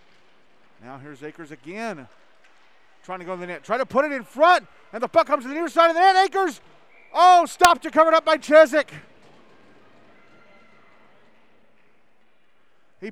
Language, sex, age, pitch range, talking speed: English, male, 40-59, 165-250 Hz, 170 wpm